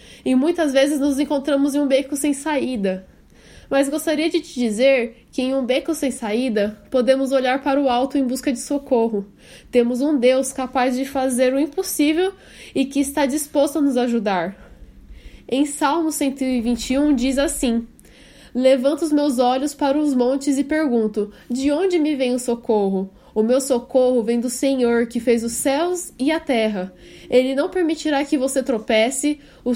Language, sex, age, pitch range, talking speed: Portuguese, female, 10-29, 240-285 Hz, 170 wpm